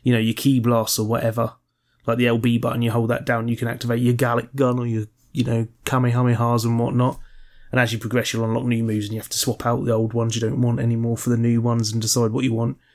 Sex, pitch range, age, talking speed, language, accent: male, 120-145 Hz, 20-39, 270 wpm, English, British